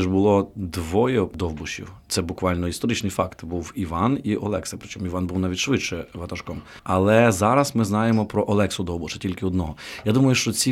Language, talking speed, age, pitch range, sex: Ukrainian, 170 wpm, 30-49, 90-110 Hz, male